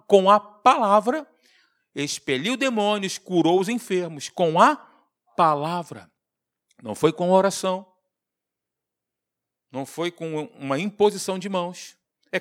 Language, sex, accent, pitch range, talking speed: Portuguese, male, Brazilian, 140-205 Hz, 110 wpm